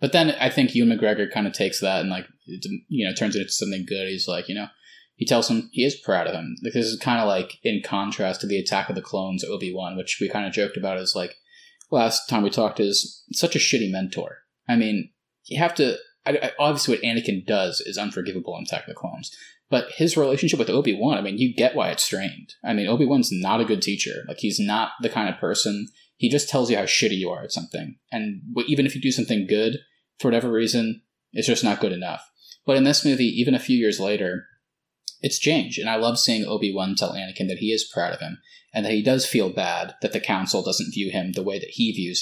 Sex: male